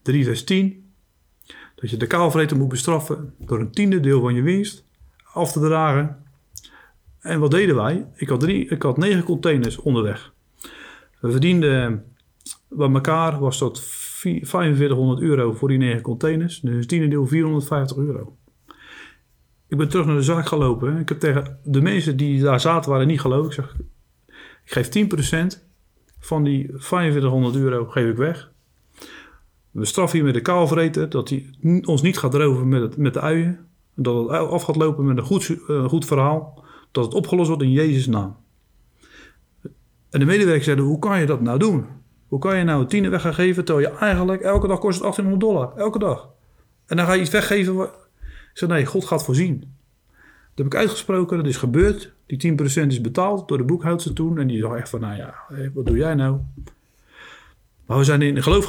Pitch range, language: 130-170 Hz, Dutch